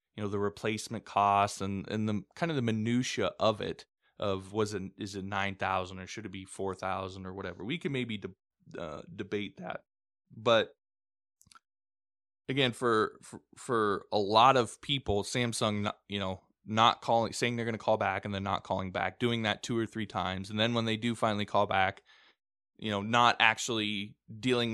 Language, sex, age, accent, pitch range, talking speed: English, male, 20-39, American, 100-120 Hz, 195 wpm